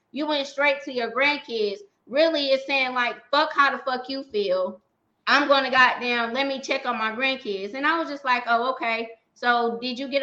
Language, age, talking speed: English, 20-39, 215 wpm